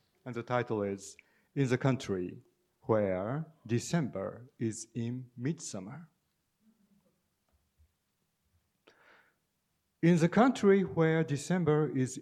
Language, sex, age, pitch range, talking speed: English, male, 50-69, 115-160 Hz, 90 wpm